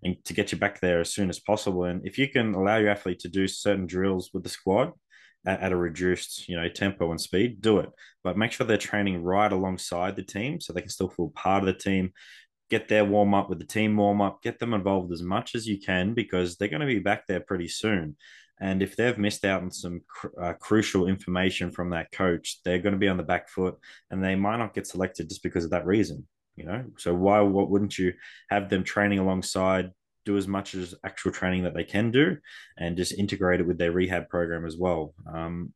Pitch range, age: 90-105 Hz, 20-39